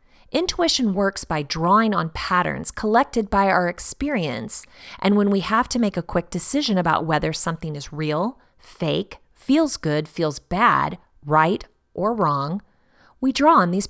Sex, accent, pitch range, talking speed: female, American, 165-255 Hz, 155 wpm